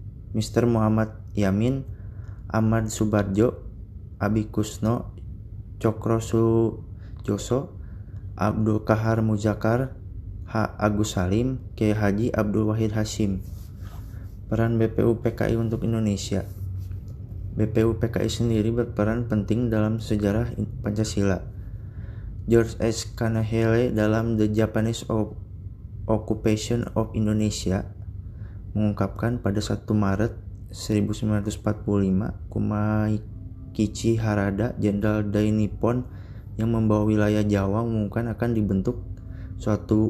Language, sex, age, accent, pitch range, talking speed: Indonesian, male, 20-39, native, 100-110 Hz, 85 wpm